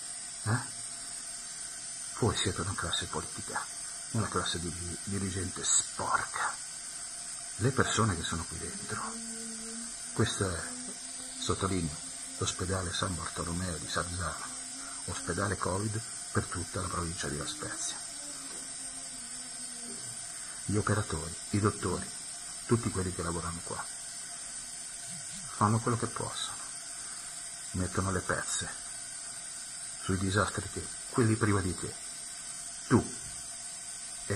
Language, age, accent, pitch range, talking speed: Italian, 50-69, native, 90-110 Hz, 105 wpm